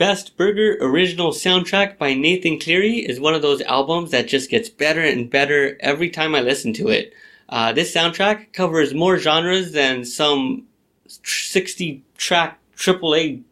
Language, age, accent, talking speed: English, 20-39, American, 150 wpm